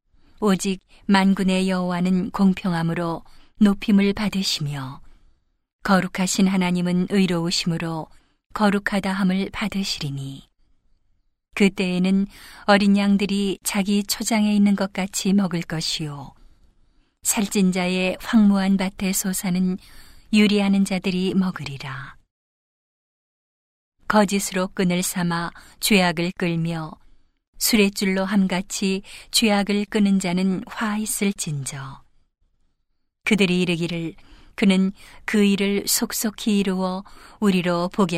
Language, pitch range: Korean, 170-200 Hz